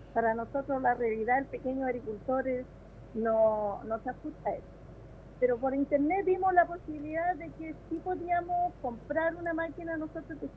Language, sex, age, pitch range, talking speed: Spanish, female, 40-59, 235-320 Hz, 165 wpm